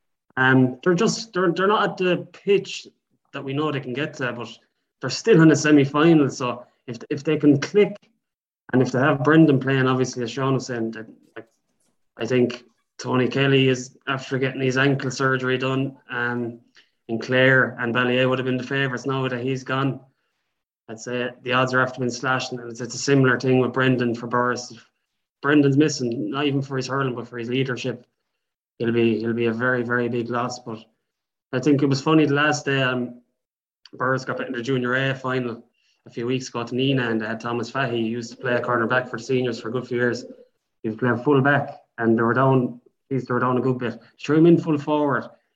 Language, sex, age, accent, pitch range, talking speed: English, male, 20-39, Irish, 120-140 Hz, 225 wpm